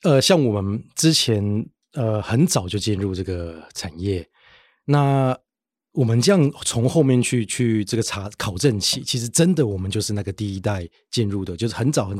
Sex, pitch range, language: male, 105-135 Hz, Chinese